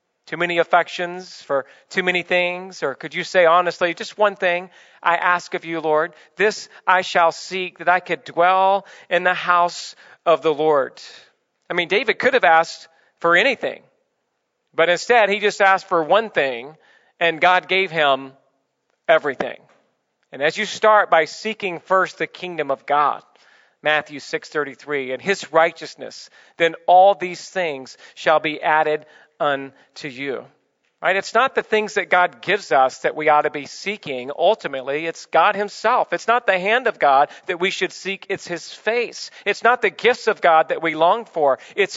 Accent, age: American, 40-59